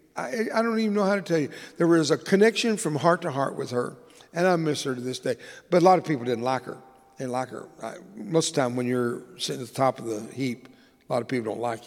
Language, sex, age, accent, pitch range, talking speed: English, male, 60-79, American, 130-165 Hz, 295 wpm